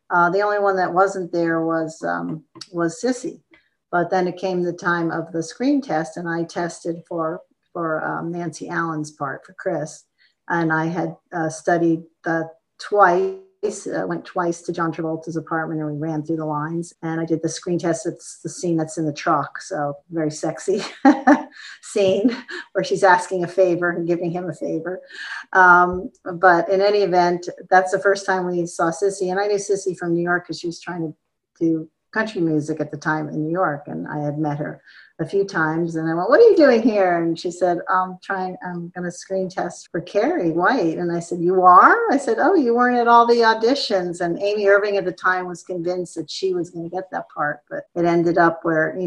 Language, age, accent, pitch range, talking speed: English, 40-59, American, 160-185 Hz, 220 wpm